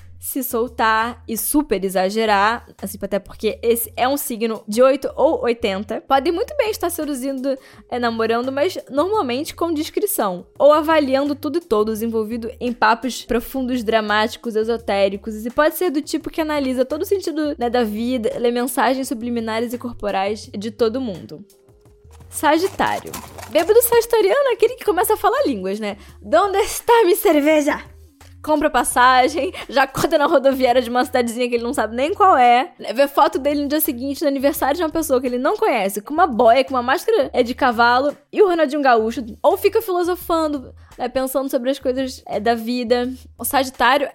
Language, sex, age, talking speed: Portuguese, female, 10-29, 180 wpm